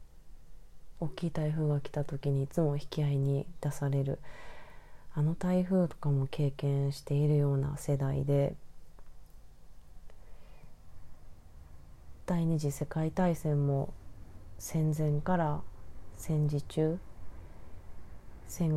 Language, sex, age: Japanese, female, 20-39